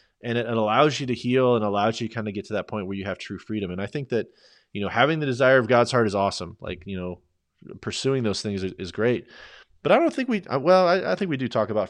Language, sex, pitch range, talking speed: English, male, 95-120 Hz, 275 wpm